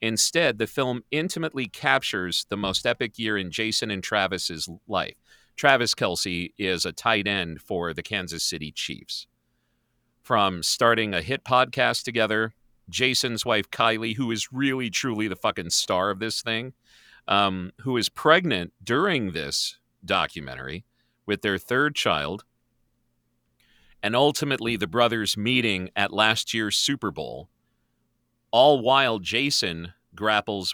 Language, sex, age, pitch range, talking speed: English, male, 40-59, 90-120 Hz, 135 wpm